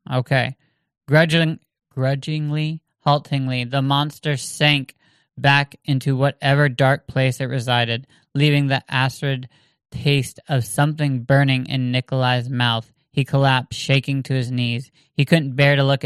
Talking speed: 125 wpm